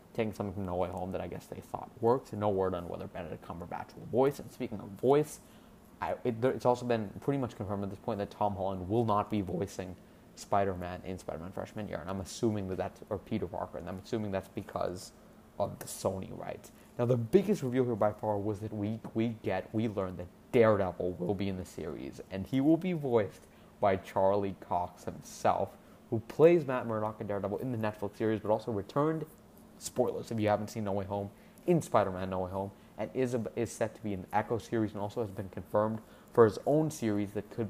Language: English